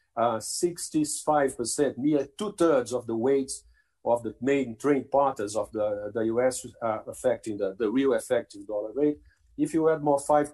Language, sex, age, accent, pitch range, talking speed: Portuguese, male, 50-69, Brazilian, 120-150 Hz, 175 wpm